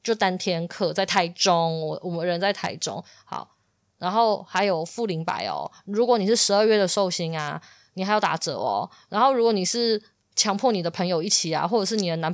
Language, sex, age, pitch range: Chinese, female, 20-39, 175-220 Hz